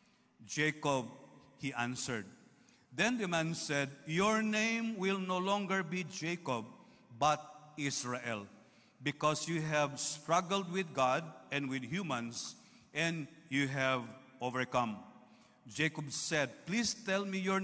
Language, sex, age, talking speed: English, male, 50-69, 120 wpm